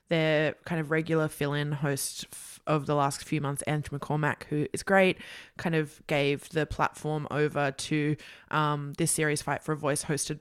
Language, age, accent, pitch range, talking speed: English, 20-39, Australian, 150-175 Hz, 180 wpm